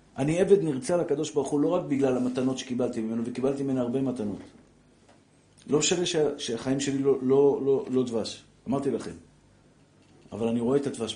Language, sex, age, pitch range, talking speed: Hebrew, male, 50-69, 115-140 Hz, 175 wpm